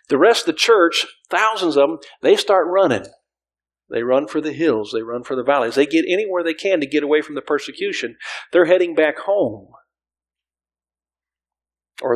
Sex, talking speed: male, 185 wpm